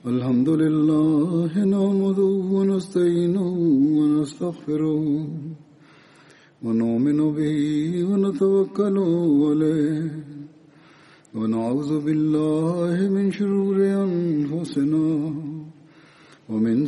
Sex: male